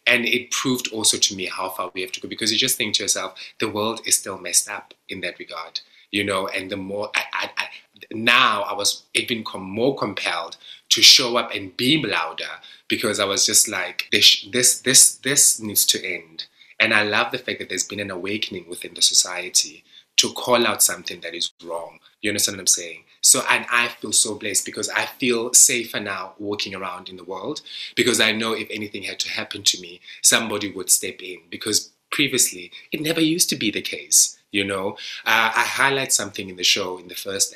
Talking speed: 215 wpm